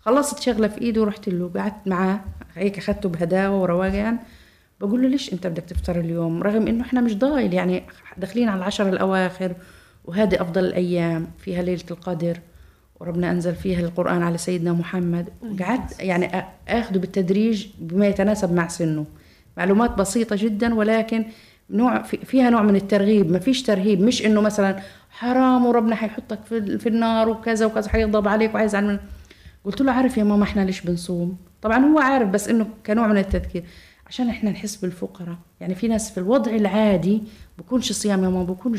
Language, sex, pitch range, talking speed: Arabic, female, 180-225 Hz, 165 wpm